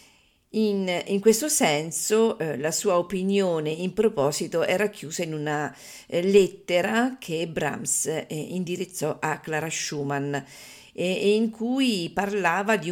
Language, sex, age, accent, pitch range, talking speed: Italian, female, 50-69, native, 155-205 Hz, 135 wpm